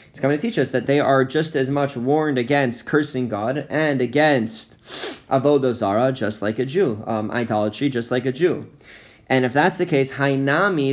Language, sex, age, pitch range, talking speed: English, male, 20-39, 125-150 Hz, 185 wpm